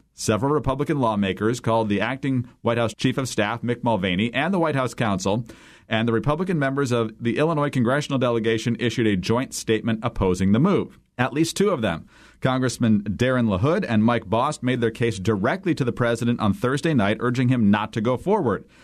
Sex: male